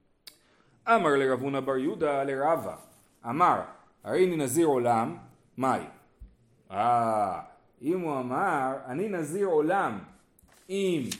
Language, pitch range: Hebrew, 140-215 Hz